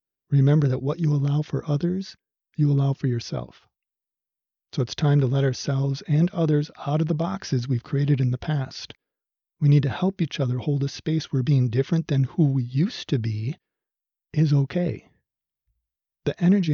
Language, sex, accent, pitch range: English, male, American, 130-160 Hz